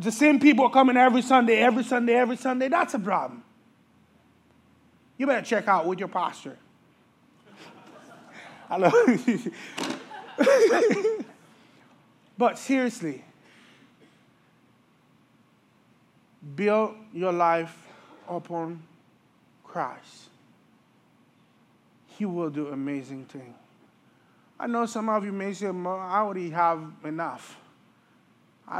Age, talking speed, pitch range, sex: 20-39, 95 wpm, 155-210 Hz, male